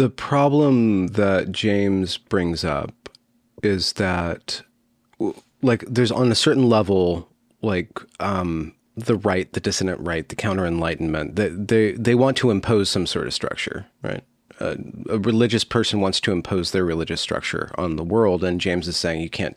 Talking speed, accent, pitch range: 165 wpm, American, 95-120 Hz